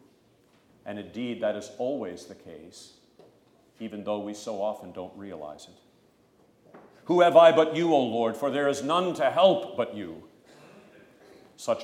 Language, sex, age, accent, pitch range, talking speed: English, male, 50-69, American, 105-150 Hz, 155 wpm